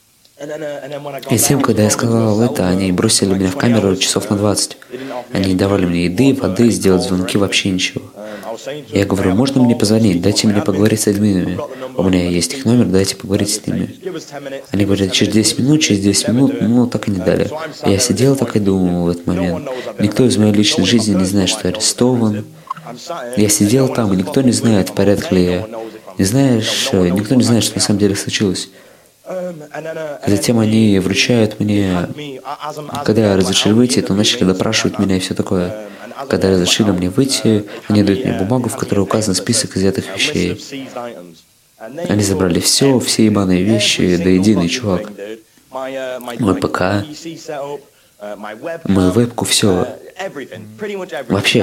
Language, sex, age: Russian, male, 20-39